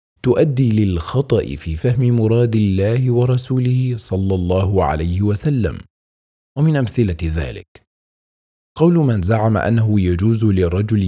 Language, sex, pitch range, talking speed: Arabic, male, 90-120 Hz, 110 wpm